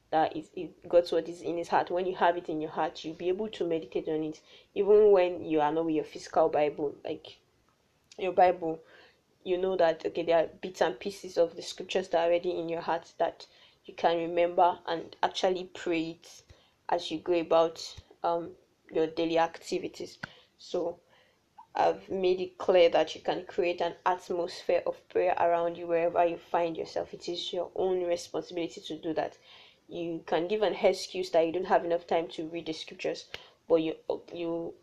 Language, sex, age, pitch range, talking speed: English, female, 10-29, 165-185 Hz, 195 wpm